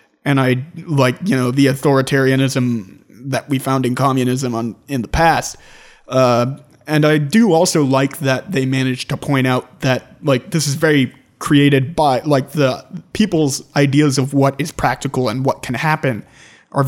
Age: 30-49